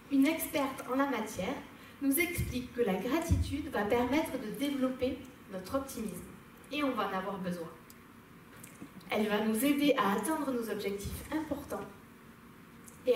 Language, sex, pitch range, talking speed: French, female, 220-275 Hz, 145 wpm